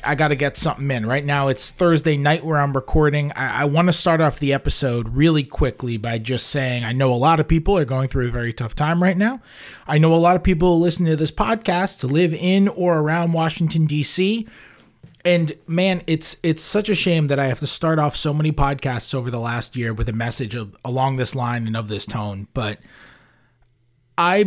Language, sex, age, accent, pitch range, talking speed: English, male, 30-49, American, 135-165 Hz, 225 wpm